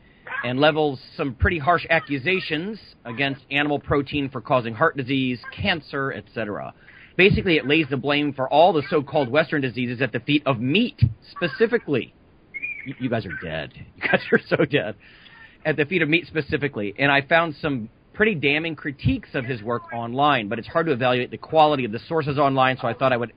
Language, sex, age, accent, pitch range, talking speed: English, male, 40-59, American, 125-155 Hz, 190 wpm